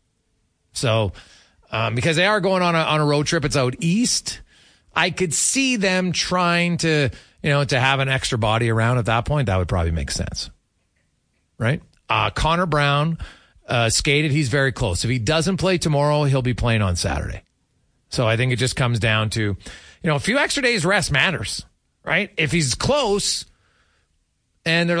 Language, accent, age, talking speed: English, American, 30-49, 185 wpm